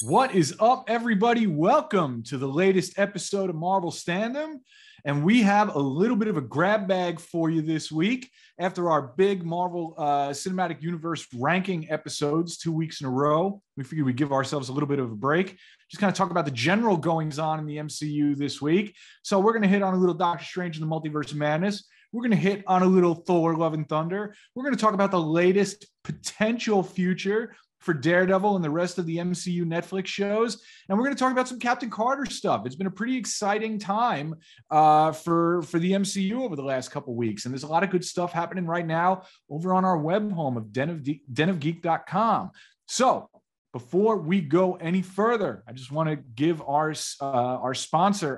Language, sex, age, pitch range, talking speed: English, male, 30-49, 155-200 Hz, 205 wpm